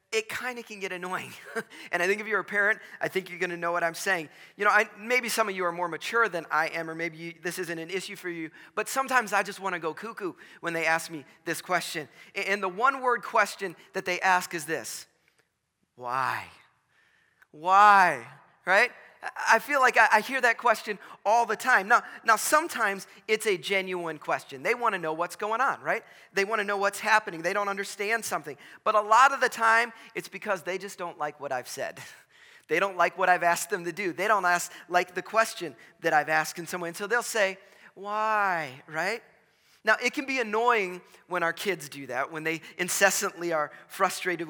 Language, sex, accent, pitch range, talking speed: English, male, American, 170-215 Hz, 215 wpm